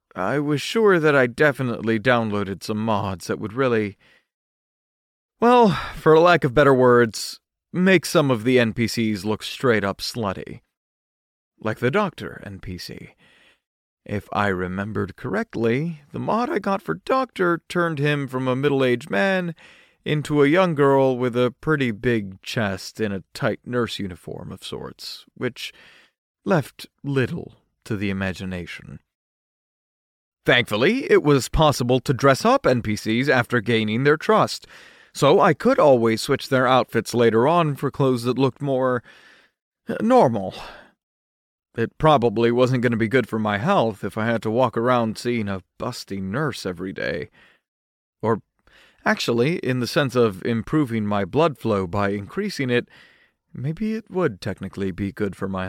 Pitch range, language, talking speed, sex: 105-145 Hz, English, 150 wpm, male